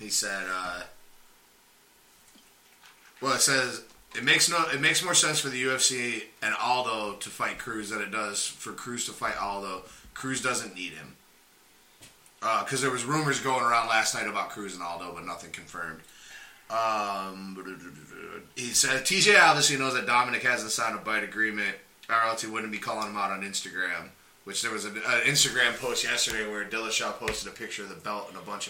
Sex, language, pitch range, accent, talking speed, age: male, English, 105-135 Hz, American, 185 wpm, 20-39